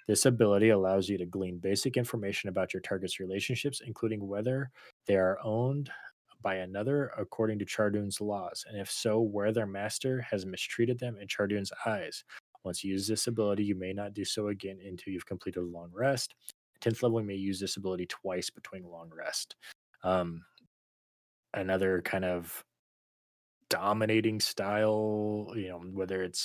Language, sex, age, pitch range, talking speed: English, male, 20-39, 90-110 Hz, 165 wpm